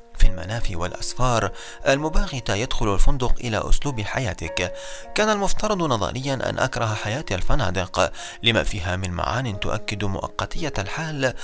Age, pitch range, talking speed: 30-49, 100-125 Hz, 120 wpm